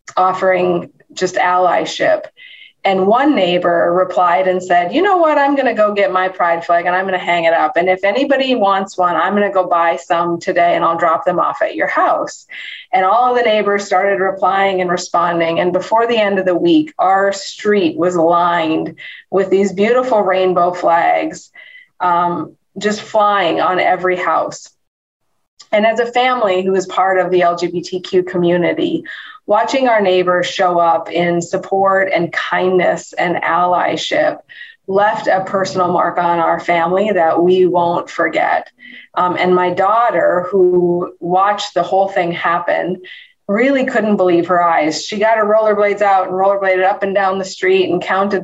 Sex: female